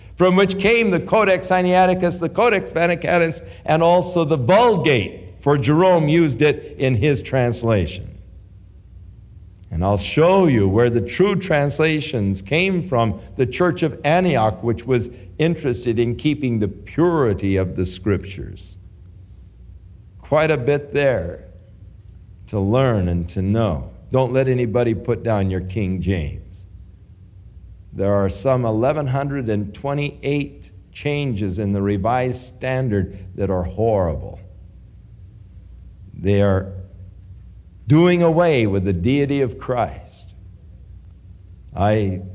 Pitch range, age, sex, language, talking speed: 95-145 Hz, 50-69, male, English, 120 wpm